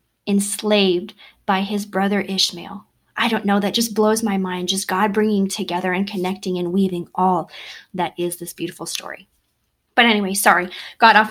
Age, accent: 20-39, American